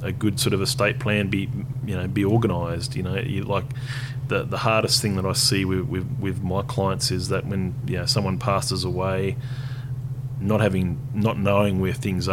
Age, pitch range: 30-49, 100-130 Hz